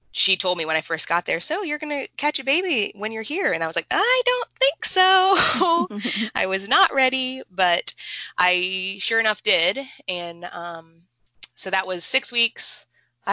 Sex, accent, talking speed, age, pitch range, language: female, American, 195 wpm, 20-39, 165-220 Hz, English